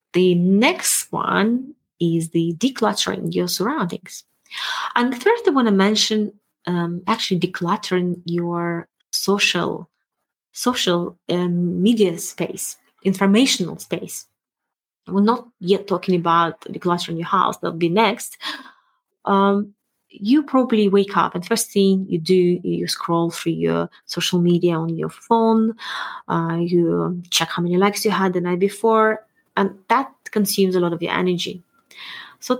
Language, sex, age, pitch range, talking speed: English, female, 20-39, 175-220 Hz, 140 wpm